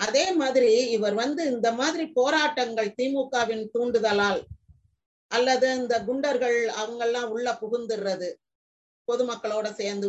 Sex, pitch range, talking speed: female, 200-260 Hz, 100 wpm